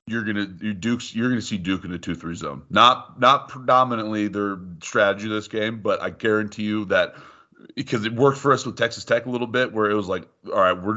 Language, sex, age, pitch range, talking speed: English, male, 30-49, 100-115 Hz, 230 wpm